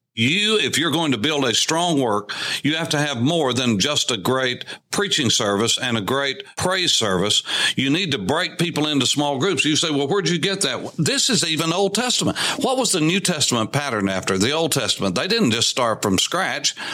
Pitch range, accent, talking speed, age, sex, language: 125-195 Hz, American, 215 wpm, 60-79, male, English